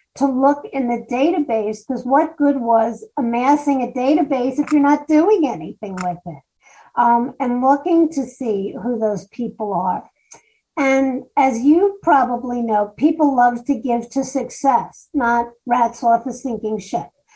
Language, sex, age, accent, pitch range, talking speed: English, female, 50-69, American, 235-290 Hz, 155 wpm